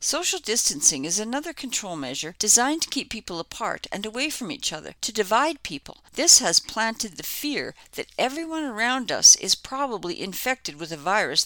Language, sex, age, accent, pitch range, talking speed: English, female, 50-69, American, 165-270 Hz, 180 wpm